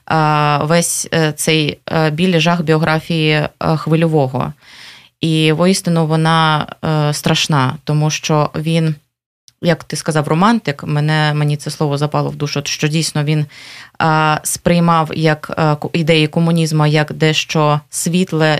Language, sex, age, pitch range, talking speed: Ukrainian, female, 20-39, 150-170 Hz, 110 wpm